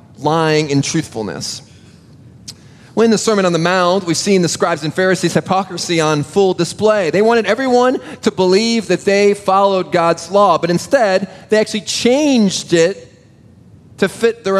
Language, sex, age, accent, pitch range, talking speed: English, male, 30-49, American, 155-215 Hz, 160 wpm